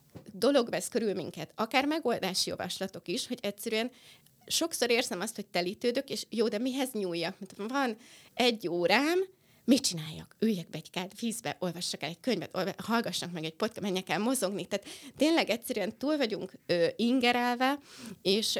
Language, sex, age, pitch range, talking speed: Hungarian, female, 20-39, 180-245 Hz, 155 wpm